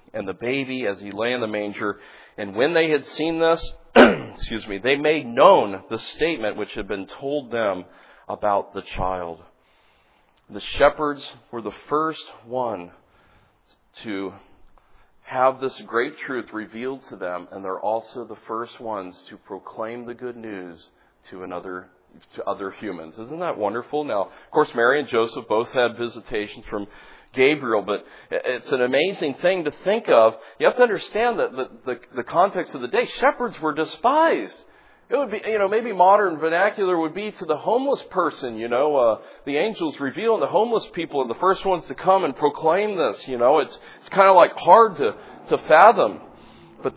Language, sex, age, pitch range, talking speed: English, male, 40-59, 110-180 Hz, 180 wpm